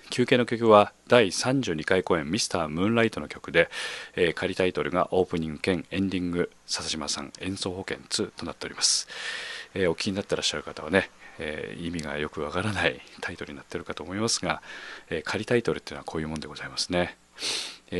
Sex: male